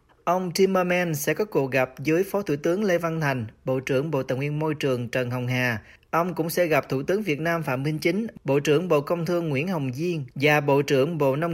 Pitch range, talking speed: 130-170 Hz, 245 wpm